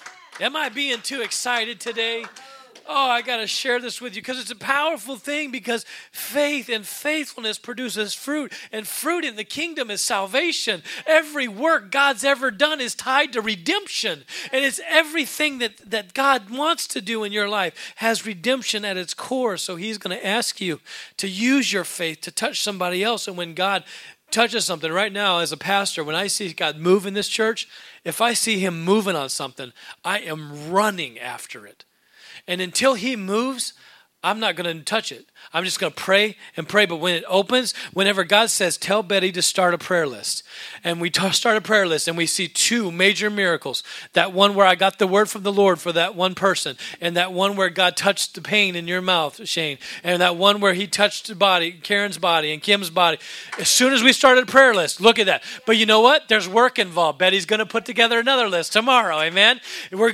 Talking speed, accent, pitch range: 210 wpm, American, 185-245 Hz